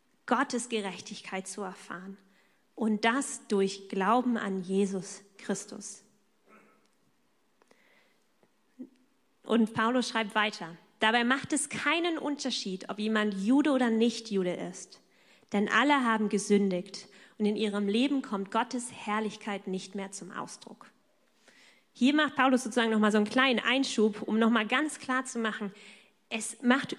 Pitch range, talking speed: 205-255 Hz, 130 wpm